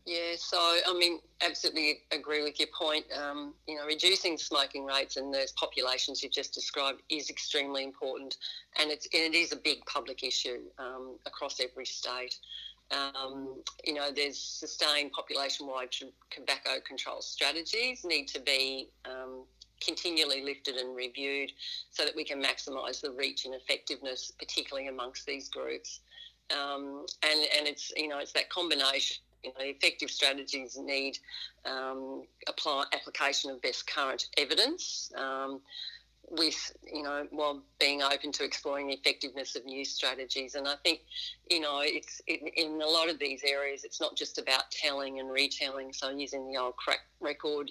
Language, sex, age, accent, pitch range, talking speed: English, female, 40-59, Australian, 135-155 Hz, 160 wpm